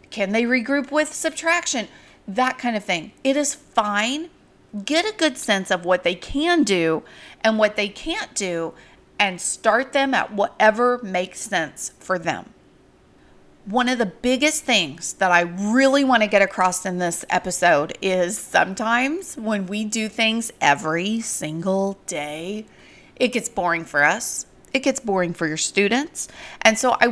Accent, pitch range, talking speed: American, 190-255 Hz, 160 wpm